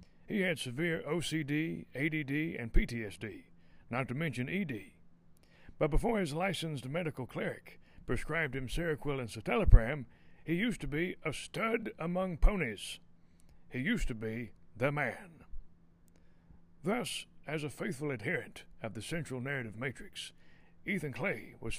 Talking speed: 135 wpm